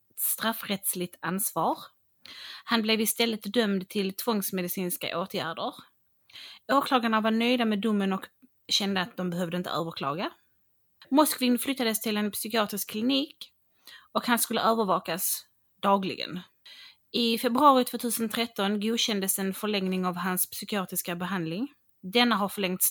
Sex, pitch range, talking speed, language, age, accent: female, 190-230 Hz, 120 wpm, English, 30-49, Swedish